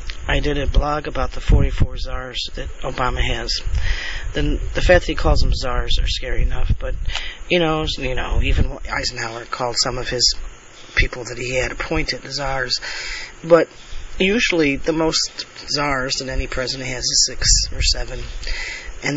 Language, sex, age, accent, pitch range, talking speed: English, male, 40-59, American, 120-140 Hz, 165 wpm